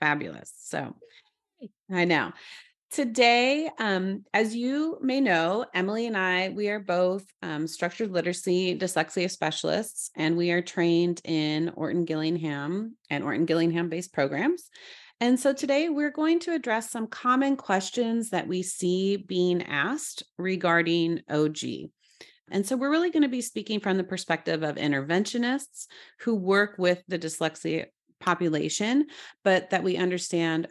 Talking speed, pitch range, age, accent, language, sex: 135 wpm, 165-225 Hz, 30-49, American, English, female